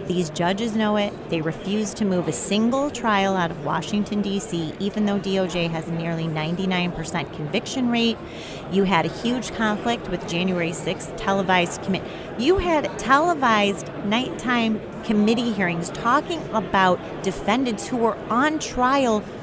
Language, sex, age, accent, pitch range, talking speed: English, female, 30-49, American, 180-240 Hz, 145 wpm